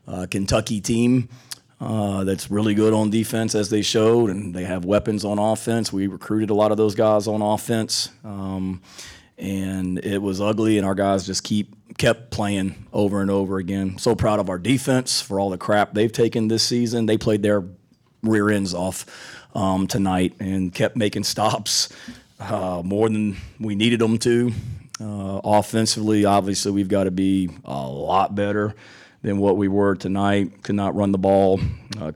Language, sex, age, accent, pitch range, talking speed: English, male, 30-49, American, 95-105 Hz, 180 wpm